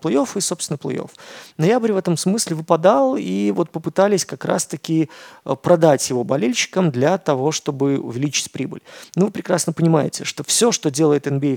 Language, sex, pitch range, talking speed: Russian, male, 140-170 Hz, 160 wpm